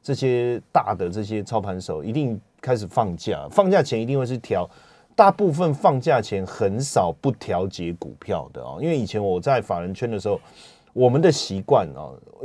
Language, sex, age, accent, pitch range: Chinese, male, 30-49, native, 110-165 Hz